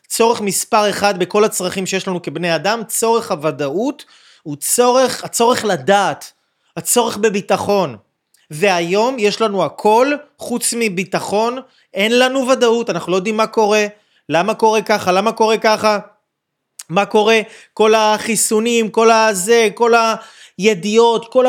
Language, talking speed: Hebrew, 125 wpm